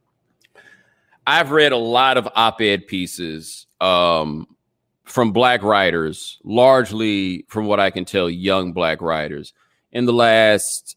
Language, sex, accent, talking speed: English, male, American, 125 wpm